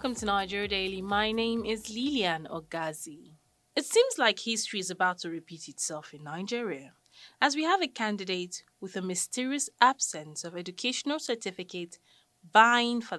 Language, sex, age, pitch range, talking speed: English, female, 20-39, 180-255 Hz, 155 wpm